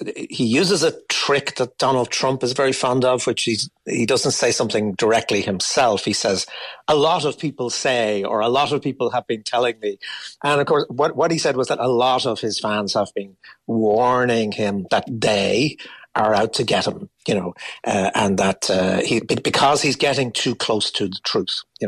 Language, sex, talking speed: English, male, 210 wpm